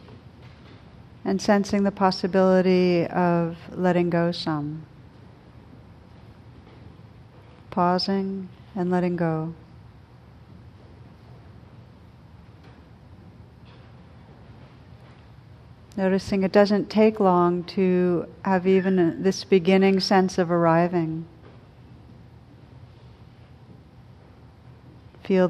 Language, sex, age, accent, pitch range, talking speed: English, female, 50-69, American, 125-190 Hz, 60 wpm